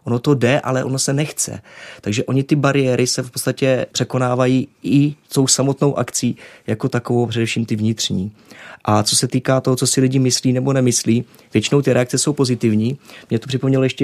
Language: Czech